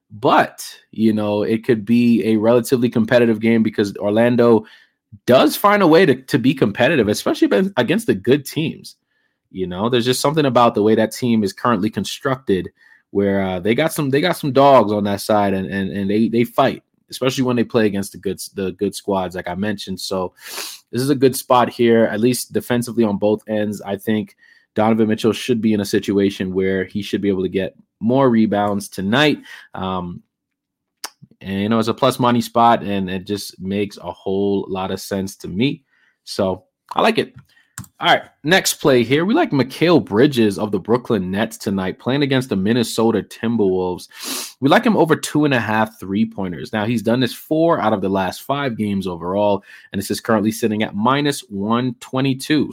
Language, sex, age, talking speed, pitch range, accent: English, male, 20-39, 195 wpm, 100-120 Hz, American